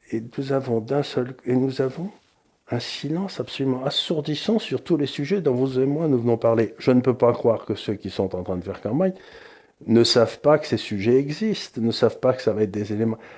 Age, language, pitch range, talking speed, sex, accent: 50-69, French, 110-155 Hz, 220 wpm, male, French